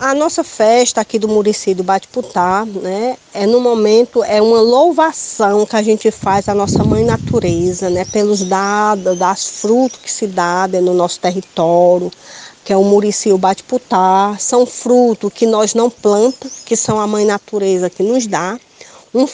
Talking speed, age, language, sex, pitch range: 170 wpm, 20-39, Portuguese, female, 200-240 Hz